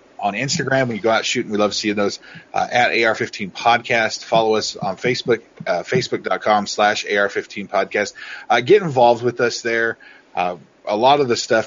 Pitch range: 100-130 Hz